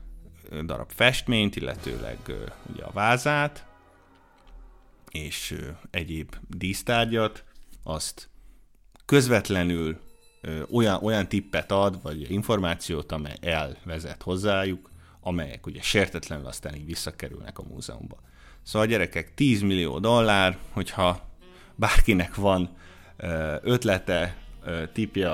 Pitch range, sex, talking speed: 80-95 Hz, male, 100 wpm